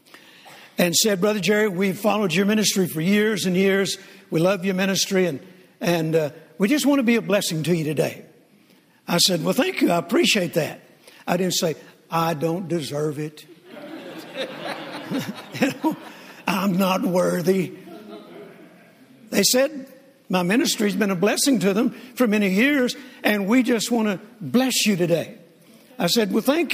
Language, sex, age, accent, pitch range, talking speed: English, male, 60-79, American, 175-240 Hz, 160 wpm